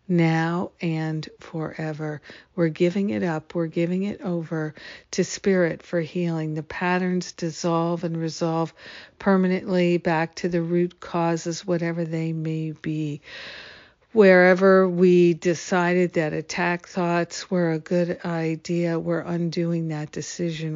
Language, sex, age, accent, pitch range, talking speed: English, female, 50-69, American, 160-180 Hz, 125 wpm